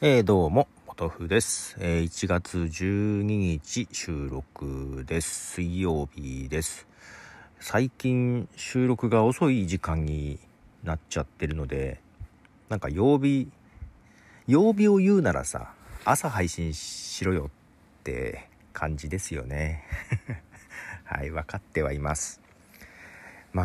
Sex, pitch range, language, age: male, 75-105 Hz, Japanese, 40-59